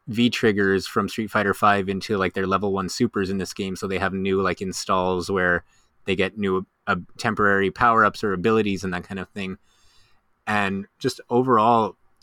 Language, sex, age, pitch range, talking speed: English, male, 30-49, 95-110 Hz, 185 wpm